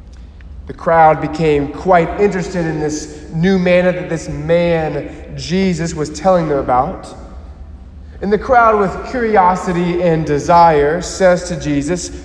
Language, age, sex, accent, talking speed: English, 20-39, male, American, 130 wpm